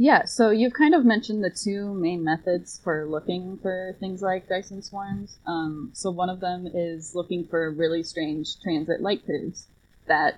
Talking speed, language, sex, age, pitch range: 180 wpm, English, female, 20-39, 160-200 Hz